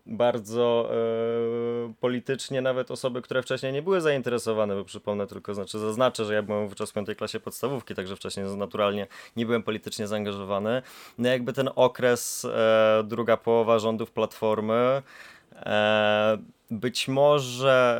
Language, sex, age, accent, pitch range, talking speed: Polish, male, 20-39, native, 110-130 Hz, 140 wpm